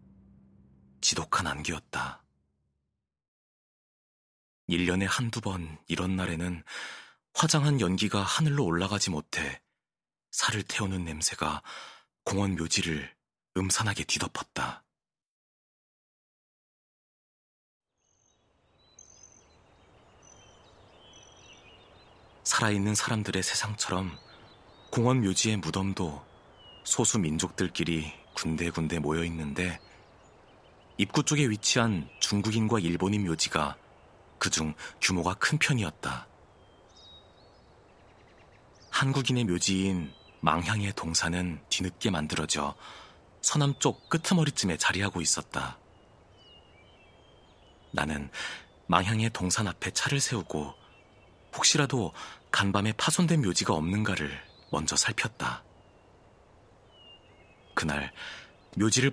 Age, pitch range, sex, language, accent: 30-49, 80-110 Hz, male, Korean, native